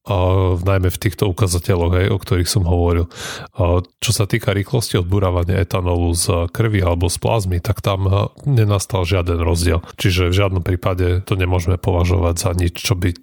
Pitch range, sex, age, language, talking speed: 90-105 Hz, male, 30-49, Slovak, 170 wpm